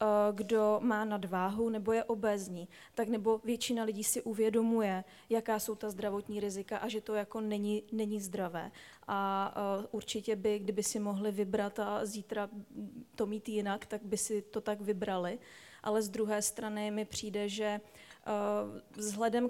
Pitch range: 210-220 Hz